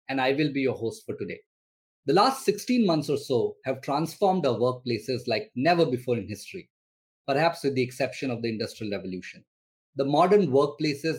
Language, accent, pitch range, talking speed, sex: English, Indian, 125-175 Hz, 180 wpm, male